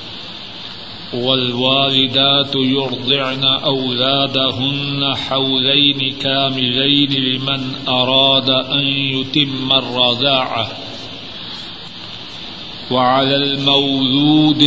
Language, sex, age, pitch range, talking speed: Urdu, male, 50-69, 135-145 Hz, 50 wpm